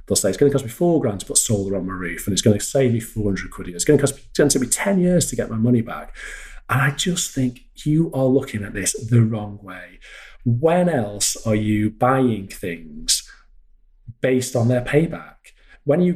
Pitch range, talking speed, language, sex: 110-130 Hz, 225 wpm, English, male